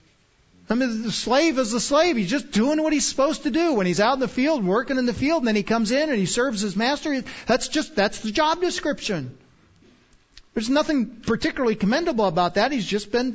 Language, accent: English, American